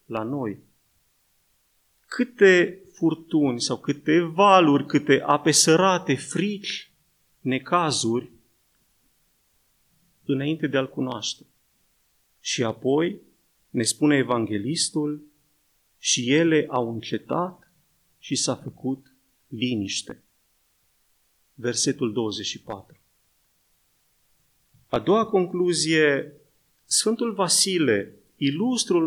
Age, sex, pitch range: 30-49, male, 130-175 Hz